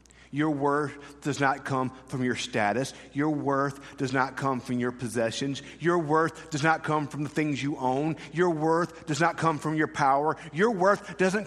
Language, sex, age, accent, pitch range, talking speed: English, male, 40-59, American, 135-180 Hz, 195 wpm